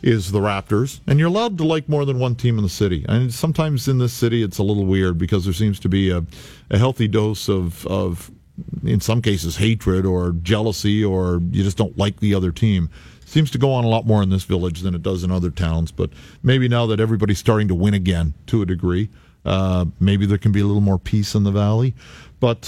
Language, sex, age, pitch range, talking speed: English, male, 50-69, 95-120 Hz, 240 wpm